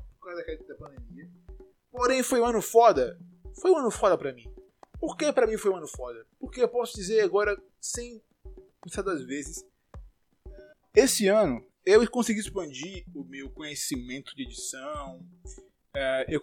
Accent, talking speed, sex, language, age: Brazilian, 140 wpm, male, Portuguese, 20-39